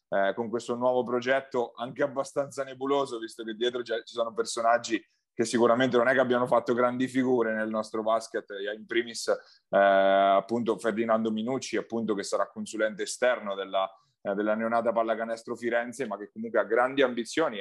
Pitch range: 110-130 Hz